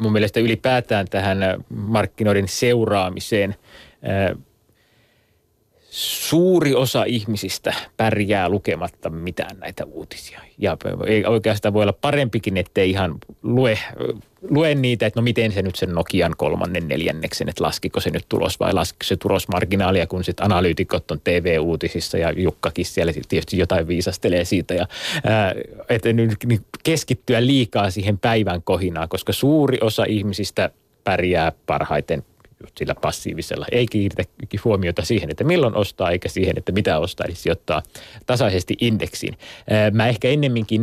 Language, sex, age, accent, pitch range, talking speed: Finnish, male, 30-49, native, 95-125 Hz, 130 wpm